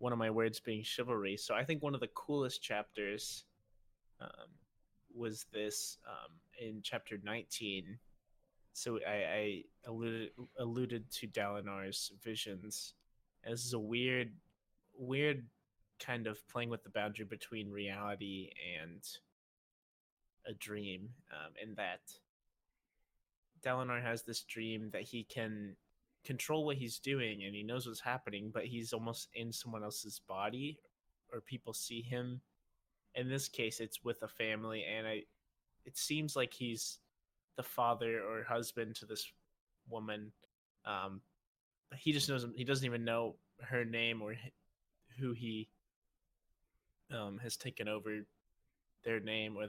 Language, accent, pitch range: English, American, 105-120 Hz